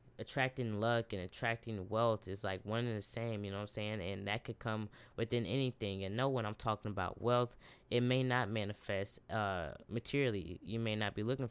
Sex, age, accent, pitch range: female, 10-29, American, 100-120 Hz